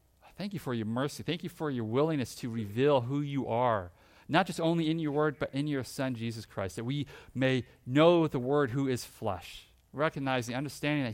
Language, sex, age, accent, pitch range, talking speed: English, male, 40-59, American, 110-155 Hz, 210 wpm